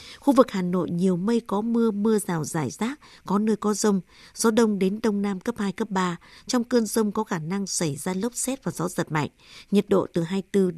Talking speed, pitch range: 240 wpm, 180-220 Hz